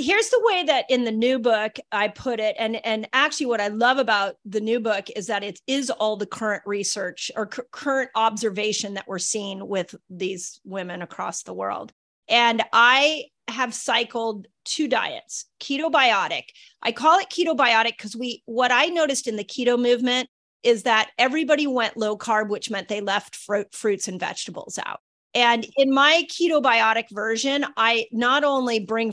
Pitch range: 210-260 Hz